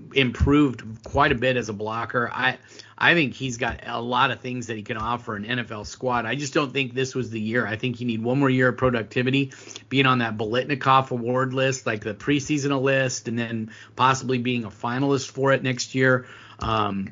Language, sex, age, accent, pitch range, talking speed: English, male, 30-49, American, 115-140 Hz, 215 wpm